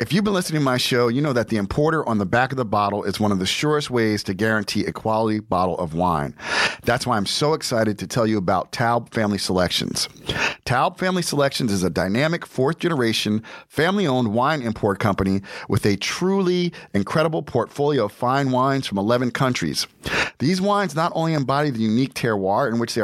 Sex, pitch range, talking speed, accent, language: male, 110-145 Hz, 205 wpm, American, English